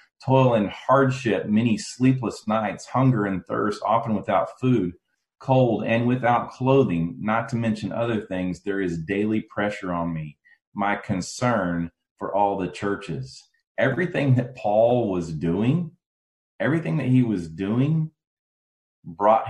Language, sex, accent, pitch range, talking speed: English, male, American, 90-125 Hz, 135 wpm